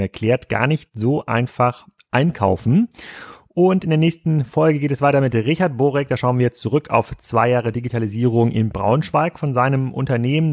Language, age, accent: German, 30-49, German